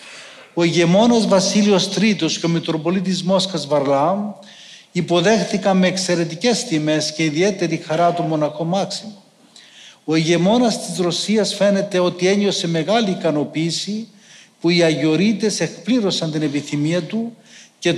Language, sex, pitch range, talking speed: Greek, male, 165-205 Hz, 120 wpm